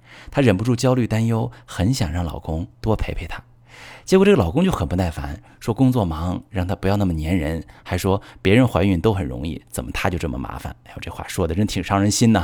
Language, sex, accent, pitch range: Chinese, male, native, 95-125 Hz